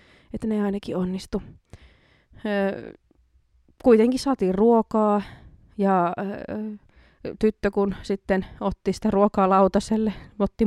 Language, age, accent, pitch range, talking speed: Finnish, 20-39, native, 185-230 Hz, 100 wpm